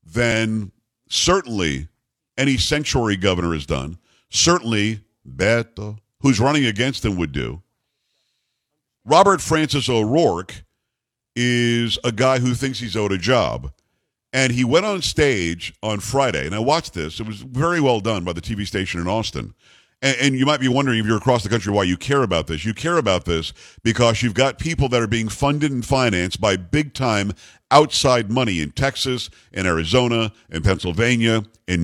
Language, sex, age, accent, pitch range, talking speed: English, male, 50-69, American, 105-130 Hz, 170 wpm